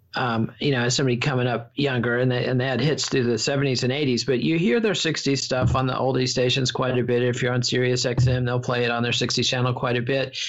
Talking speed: 270 wpm